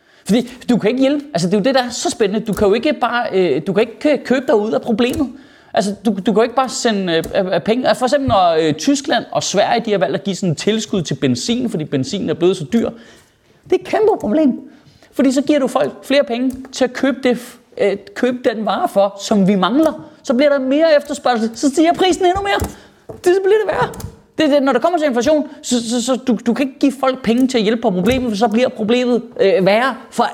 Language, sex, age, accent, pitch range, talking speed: Danish, male, 30-49, native, 215-275 Hz, 255 wpm